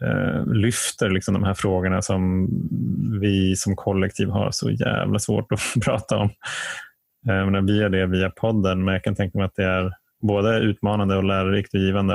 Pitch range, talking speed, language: 95-105 Hz, 170 wpm, Swedish